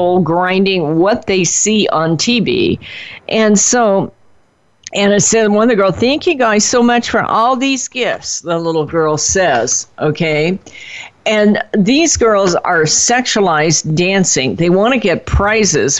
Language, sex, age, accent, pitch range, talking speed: English, female, 50-69, American, 155-210 Hz, 150 wpm